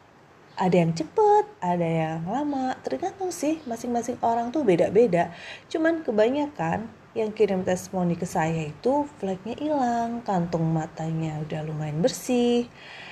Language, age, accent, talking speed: Indonesian, 30-49, native, 125 wpm